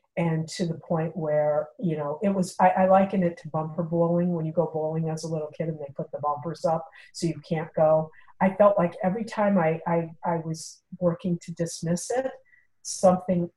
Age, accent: 50-69, American